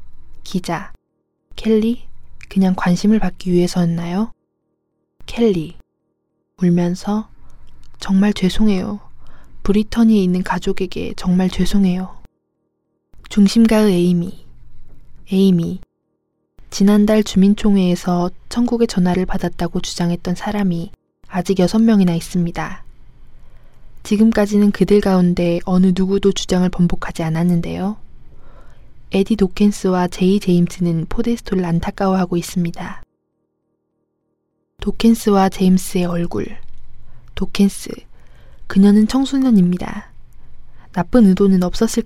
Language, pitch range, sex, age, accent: Korean, 170-205 Hz, female, 20-39, native